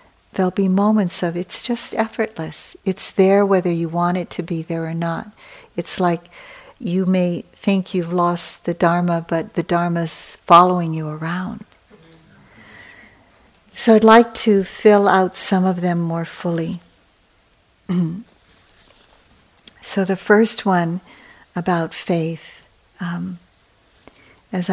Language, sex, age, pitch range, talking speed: English, female, 60-79, 170-200 Hz, 125 wpm